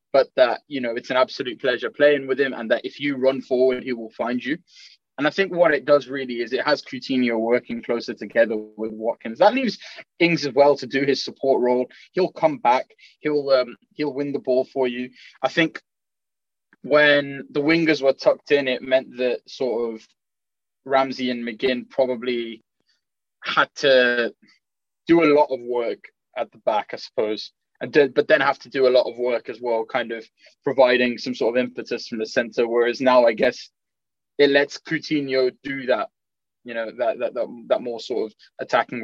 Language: English